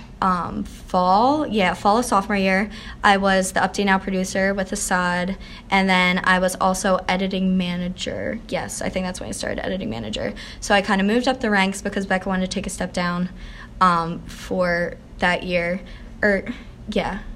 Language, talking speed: English, 185 wpm